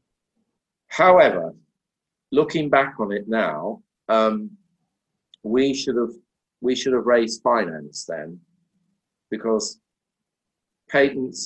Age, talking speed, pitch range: 50-69, 95 wpm, 90-125 Hz